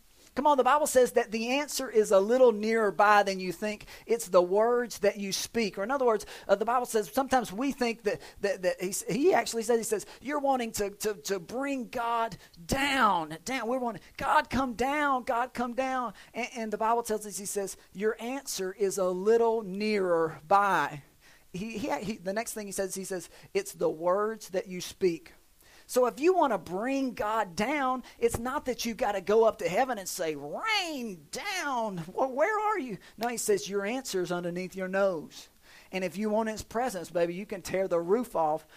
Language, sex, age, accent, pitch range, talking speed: English, male, 40-59, American, 185-240 Hz, 210 wpm